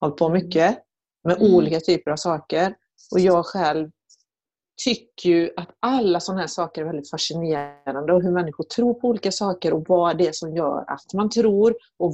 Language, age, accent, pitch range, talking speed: English, 40-59, Swedish, 170-215 Hz, 185 wpm